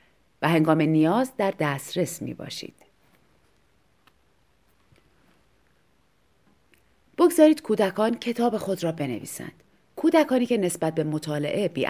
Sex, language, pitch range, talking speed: female, Persian, 155-225 Hz, 95 wpm